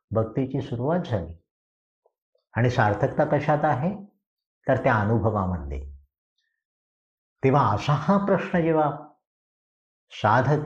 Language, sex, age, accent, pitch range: Marathi, male, 50-69, native, 105-160 Hz